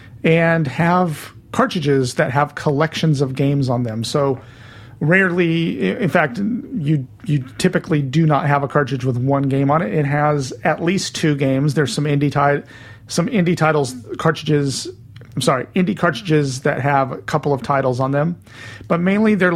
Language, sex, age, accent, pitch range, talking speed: English, male, 40-59, American, 125-155 Hz, 170 wpm